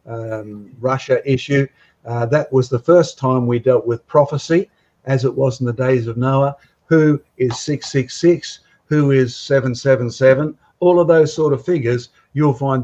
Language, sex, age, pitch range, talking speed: English, male, 50-69, 125-140 Hz, 165 wpm